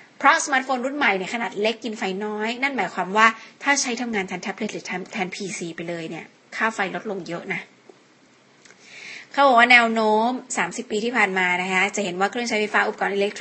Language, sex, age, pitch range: Thai, female, 20-39, 200-250 Hz